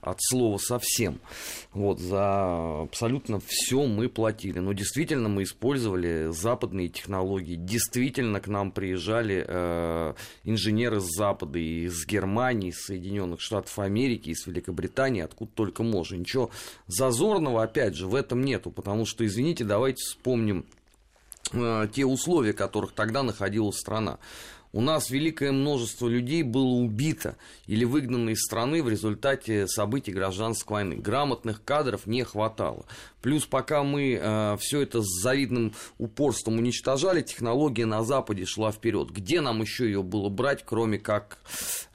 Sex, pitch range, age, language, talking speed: male, 100-125 Hz, 30-49, Russian, 140 wpm